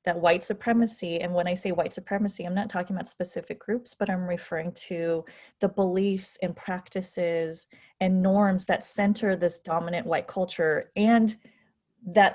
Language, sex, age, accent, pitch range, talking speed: English, female, 30-49, American, 175-215 Hz, 160 wpm